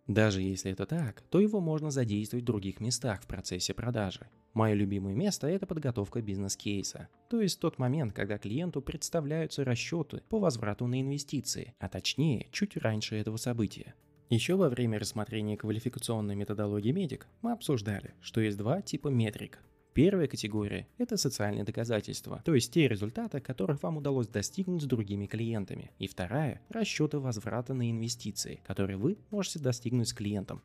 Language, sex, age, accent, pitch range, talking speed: Russian, male, 20-39, native, 105-145 Hz, 155 wpm